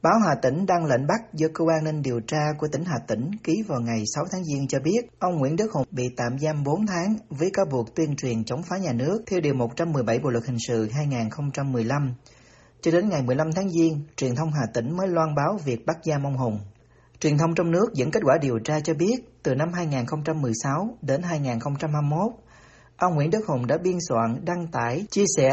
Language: Vietnamese